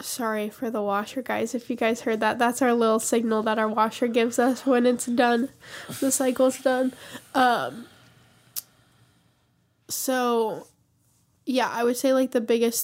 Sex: female